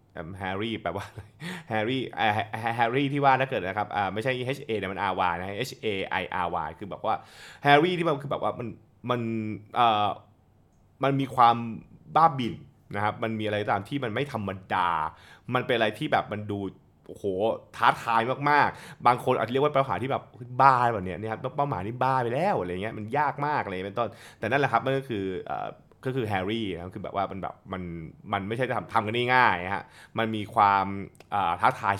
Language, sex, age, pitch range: Thai, male, 20-39, 100-130 Hz